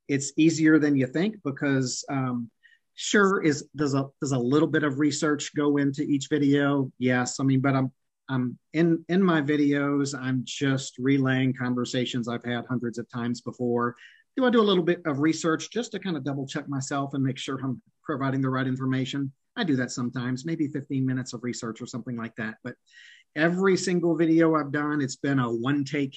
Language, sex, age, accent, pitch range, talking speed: English, male, 40-59, American, 125-150 Hz, 200 wpm